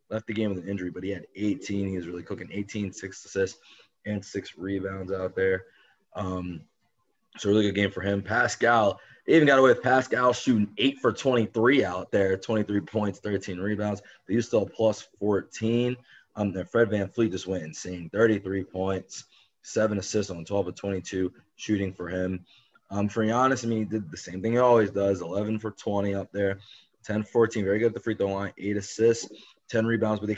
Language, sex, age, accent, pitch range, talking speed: English, male, 20-39, American, 95-110 Hz, 205 wpm